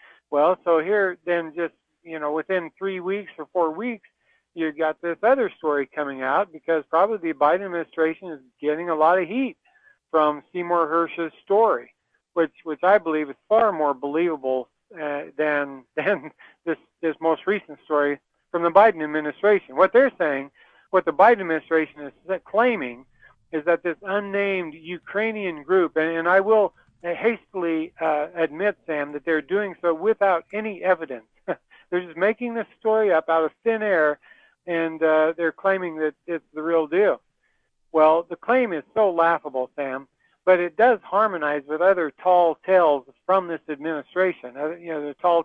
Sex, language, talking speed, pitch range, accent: male, English, 165 wpm, 155-185 Hz, American